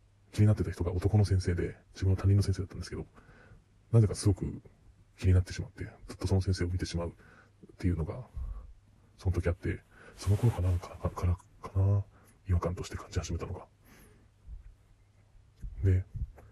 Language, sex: Japanese, male